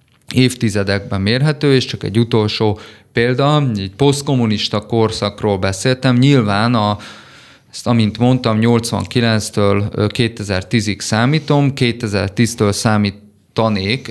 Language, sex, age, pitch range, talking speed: Hungarian, male, 30-49, 100-130 Hz, 90 wpm